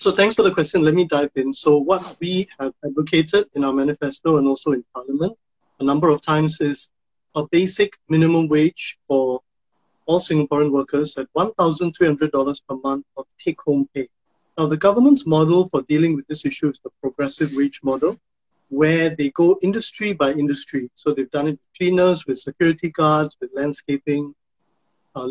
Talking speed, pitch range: 180 wpm, 145-180 Hz